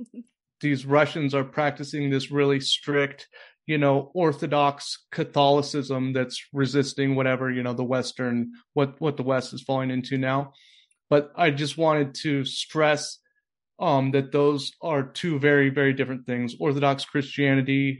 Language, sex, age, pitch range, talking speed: English, male, 30-49, 135-145 Hz, 145 wpm